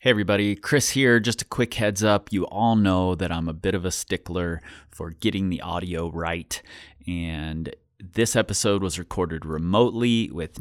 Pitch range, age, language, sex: 85-115 Hz, 30-49, English, male